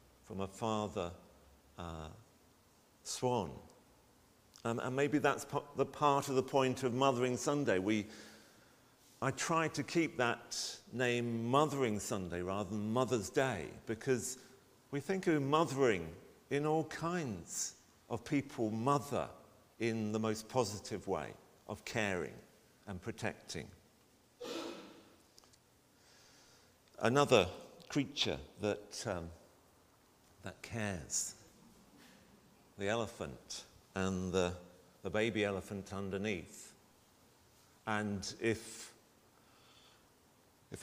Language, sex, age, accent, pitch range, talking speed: English, male, 50-69, British, 100-130 Hz, 100 wpm